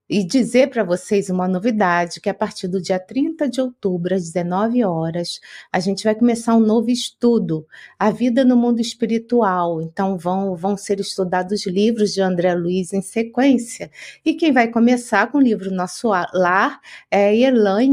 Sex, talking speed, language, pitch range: female, 170 wpm, Portuguese, 190-240 Hz